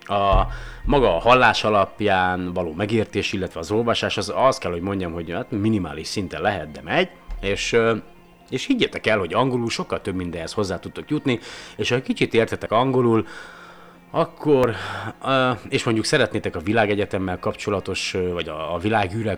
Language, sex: Hungarian, male